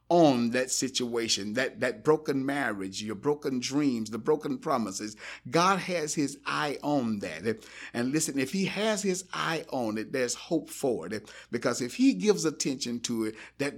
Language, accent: English, American